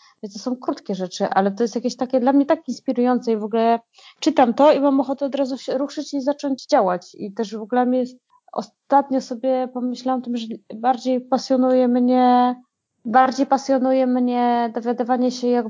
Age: 20-39